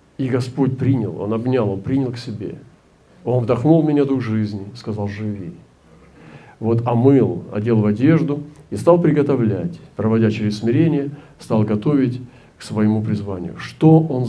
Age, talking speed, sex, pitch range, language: 40-59, 145 wpm, male, 110-140 Hz, Russian